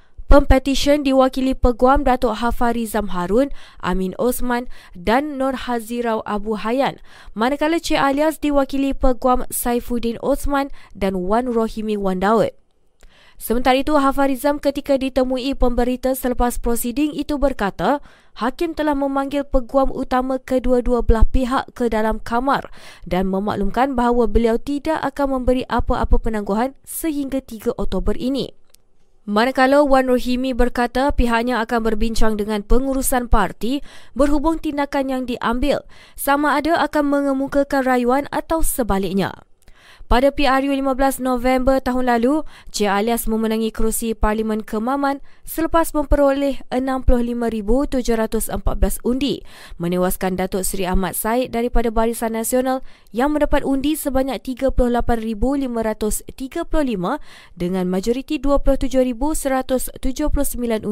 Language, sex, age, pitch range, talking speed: Malay, female, 20-39, 225-275 Hz, 110 wpm